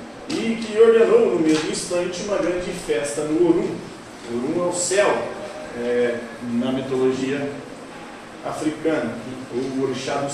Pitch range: 155-235 Hz